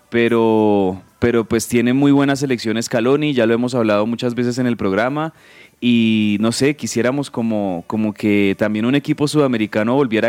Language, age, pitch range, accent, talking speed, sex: Spanish, 20-39, 115-140 Hz, Colombian, 170 wpm, male